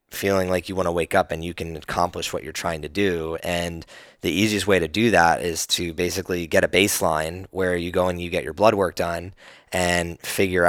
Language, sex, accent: English, male, American